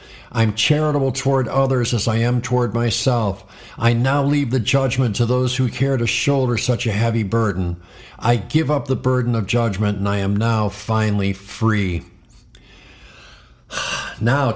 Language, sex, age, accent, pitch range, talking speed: English, male, 50-69, American, 110-135 Hz, 155 wpm